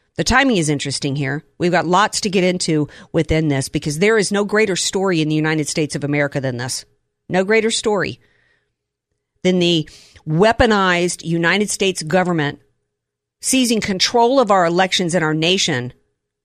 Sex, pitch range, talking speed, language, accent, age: female, 155-225 Hz, 160 wpm, English, American, 50-69